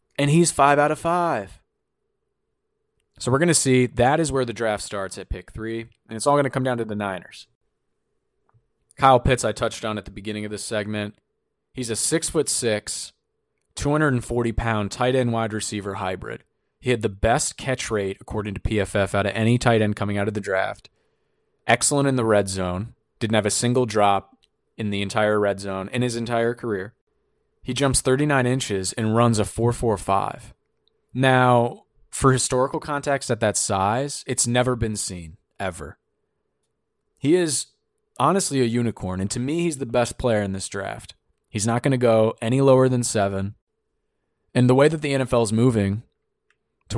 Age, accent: 20-39, American